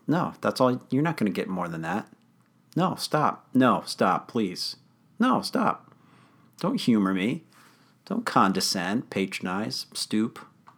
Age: 50-69